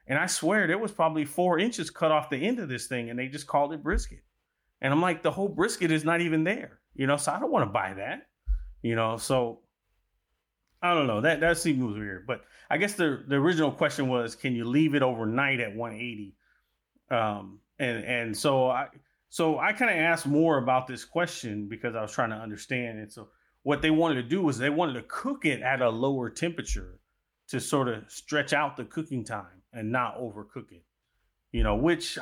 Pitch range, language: 105-145 Hz, English